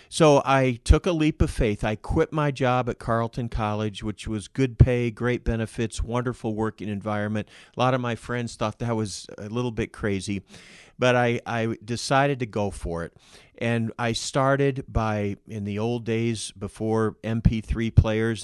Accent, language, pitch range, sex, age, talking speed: American, English, 110-130 Hz, male, 50-69, 175 wpm